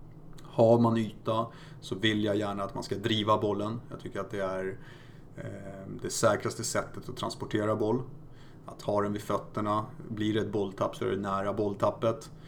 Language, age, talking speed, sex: Swedish, 30-49, 180 wpm, male